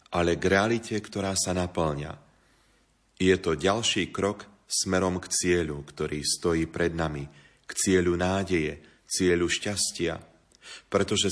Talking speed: 125 wpm